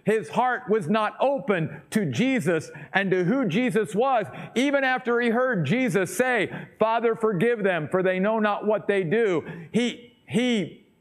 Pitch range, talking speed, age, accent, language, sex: 155-205 Hz, 165 wpm, 50-69, American, English, male